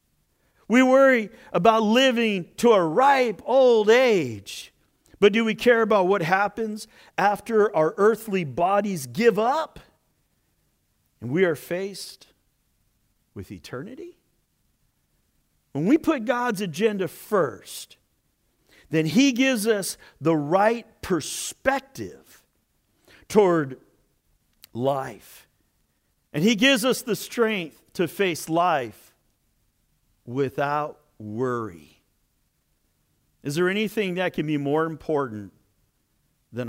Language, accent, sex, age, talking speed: English, American, male, 50-69, 105 wpm